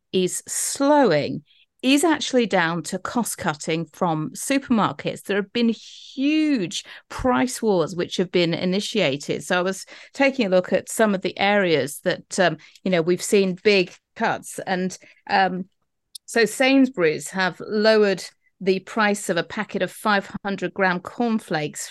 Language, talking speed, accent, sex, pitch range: English, 150 wpm, British, female, 185-235 Hz